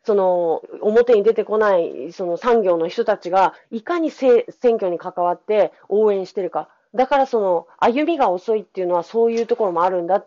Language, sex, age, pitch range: Japanese, female, 40-59, 160-225 Hz